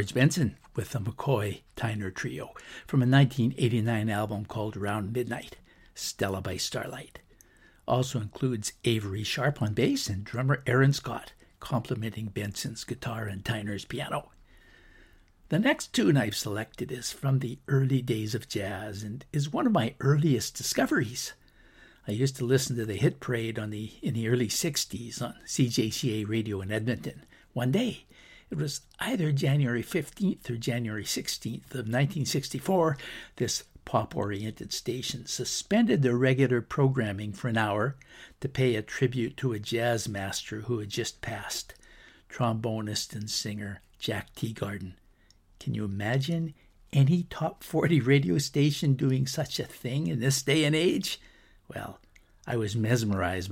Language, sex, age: English, male, 60-79